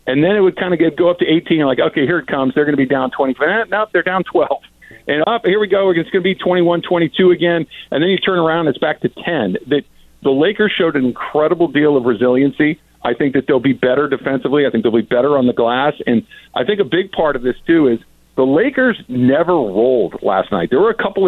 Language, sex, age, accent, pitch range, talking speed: English, male, 50-69, American, 130-175 Hz, 260 wpm